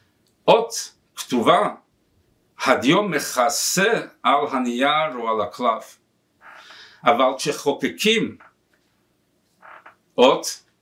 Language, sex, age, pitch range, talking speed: Hebrew, male, 60-79, 140-205 Hz, 65 wpm